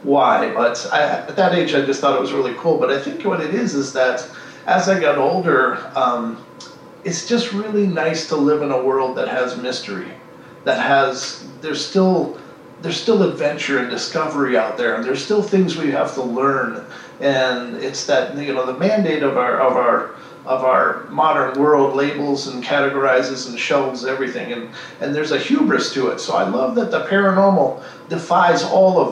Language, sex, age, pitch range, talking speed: English, male, 40-59, 130-175 Hz, 195 wpm